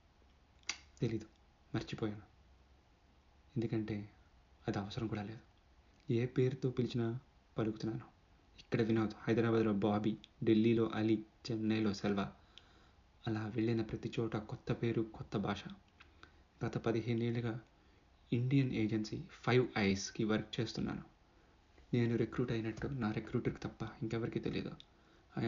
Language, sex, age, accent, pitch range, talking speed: Telugu, male, 30-49, native, 105-115 Hz, 105 wpm